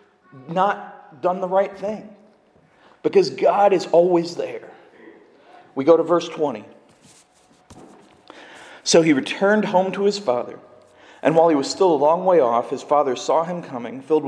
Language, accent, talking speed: English, American, 155 wpm